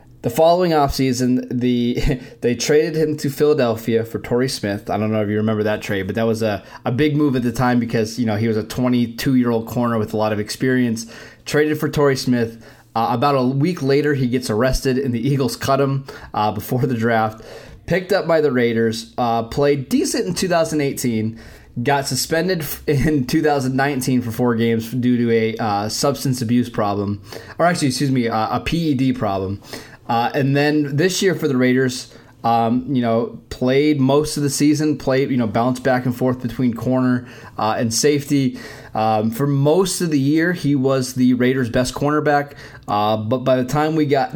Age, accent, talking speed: 20-39, American, 190 wpm